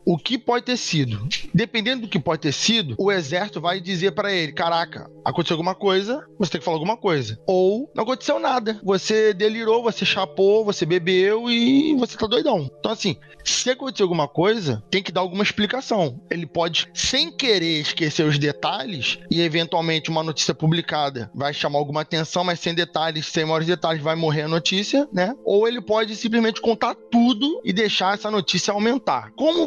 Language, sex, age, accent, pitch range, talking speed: Portuguese, male, 20-39, Brazilian, 160-220 Hz, 185 wpm